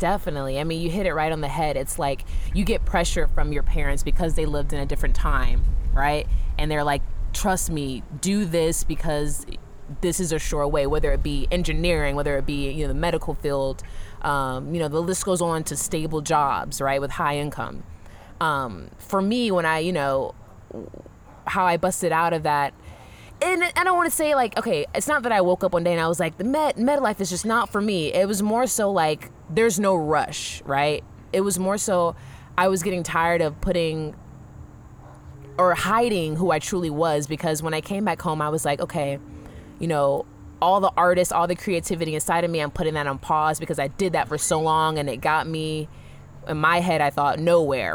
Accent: American